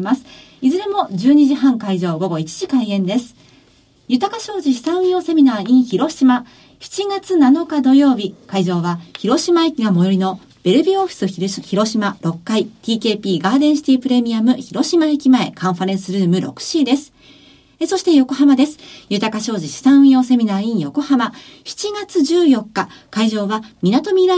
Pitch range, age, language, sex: 195-285 Hz, 40-59, Japanese, female